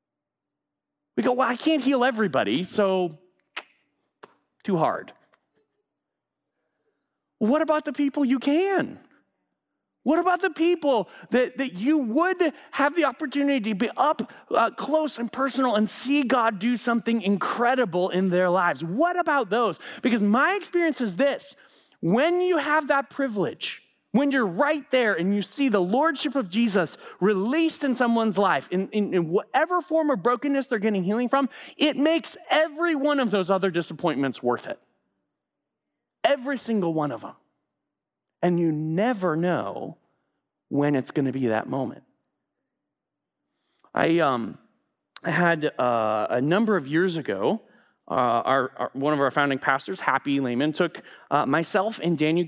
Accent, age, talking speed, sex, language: American, 30-49, 150 wpm, male, English